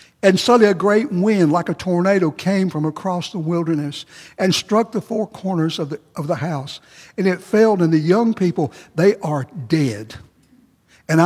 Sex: male